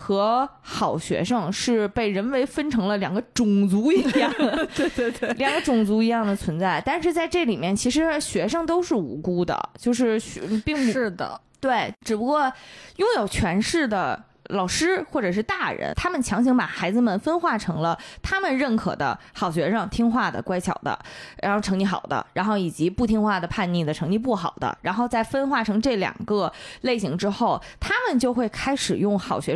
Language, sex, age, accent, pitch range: Chinese, female, 20-39, native, 190-260 Hz